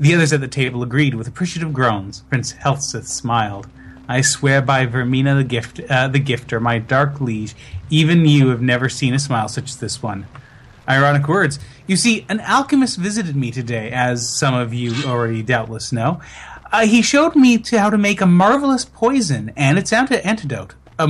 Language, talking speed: English, 190 wpm